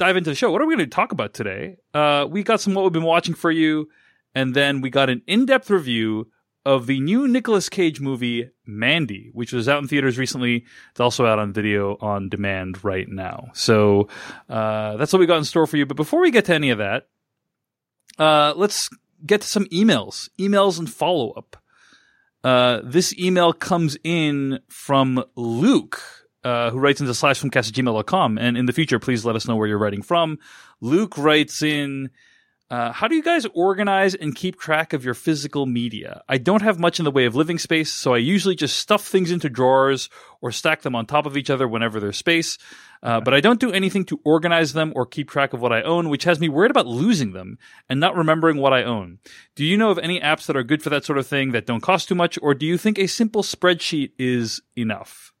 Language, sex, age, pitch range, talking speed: English, male, 30-49, 125-175 Hz, 225 wpm